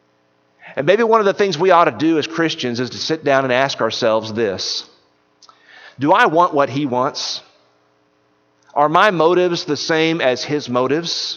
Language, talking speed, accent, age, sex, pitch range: English, 180 wpm, American, 50-69, male, 100-165 Hz